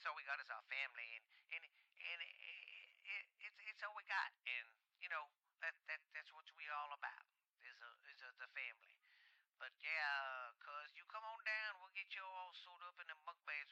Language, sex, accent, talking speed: English, male, American, 220 wpm